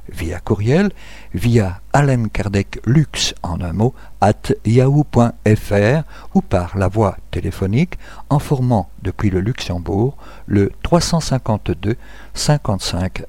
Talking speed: 110 wpm